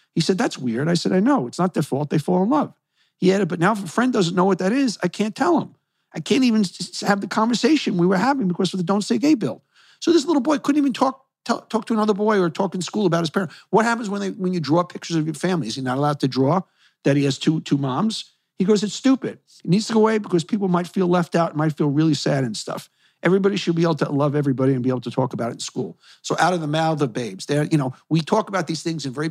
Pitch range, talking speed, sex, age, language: 140-195 Hz, 295 wpm, male, 50-69, English